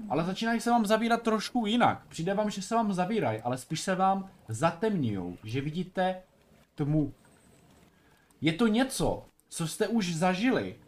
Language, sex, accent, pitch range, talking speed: Czech, male, native, 145-205 Hz, 155 wpm